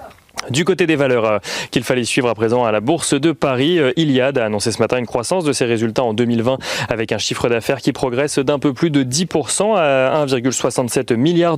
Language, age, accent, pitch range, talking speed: French, 30-49, French, 120-150 Hz, 205 wpm